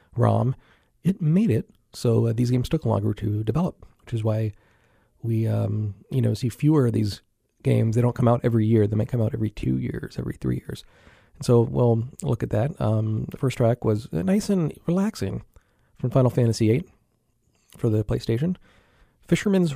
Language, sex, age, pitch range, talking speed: English, male, 40-59, 110-130 Hz, 190 wpm